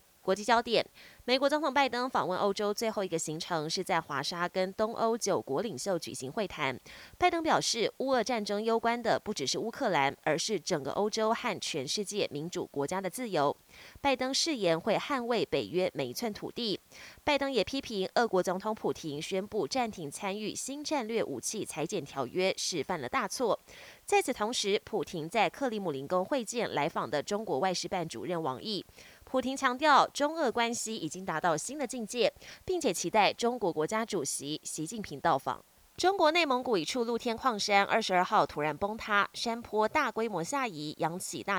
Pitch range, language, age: 175-250 Hz, Chinese, 20-39